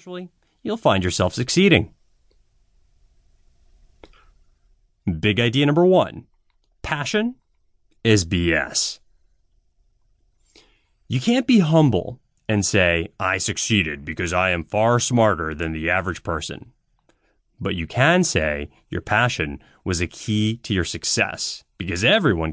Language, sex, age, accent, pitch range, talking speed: English, male, 30-49, American, 95-155 Hz, 110 wpm